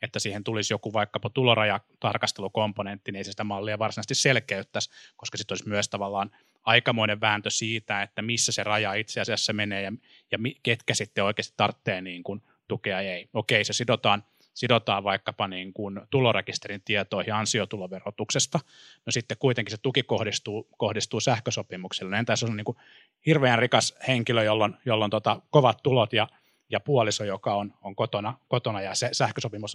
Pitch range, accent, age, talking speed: 105-125 Hz, native, 20-39, 165 wpm